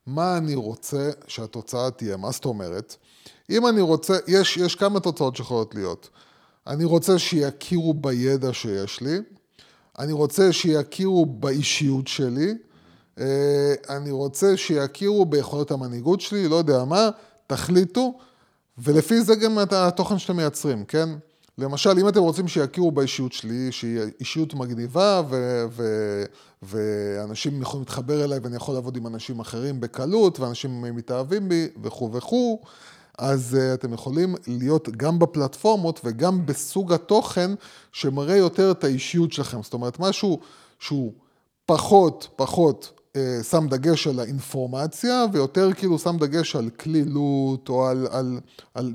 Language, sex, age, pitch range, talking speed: Hebrew, male, 30-49, 130-175 Hz, 135 wpm